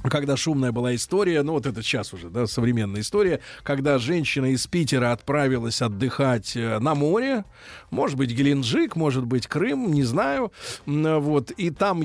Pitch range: 130-175 Hz